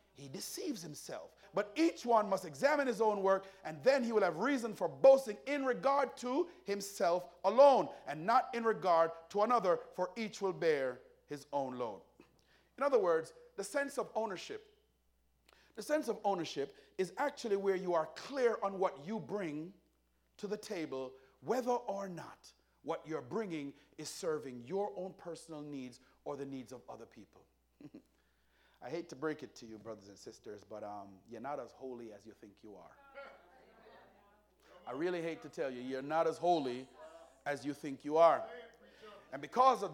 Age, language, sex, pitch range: 40-59, English, male, 160-255 Hz